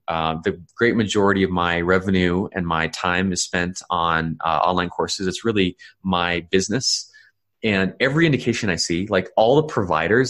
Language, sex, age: English, male, 30-49